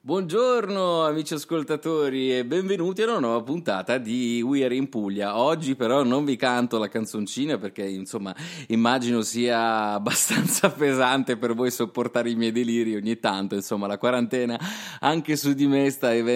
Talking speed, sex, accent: 160 wpm, male, native